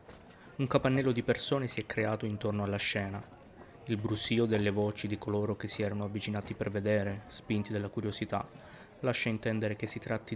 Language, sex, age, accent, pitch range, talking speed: Italian, male, 20-39, native, 105-125 Hz, 175 wpm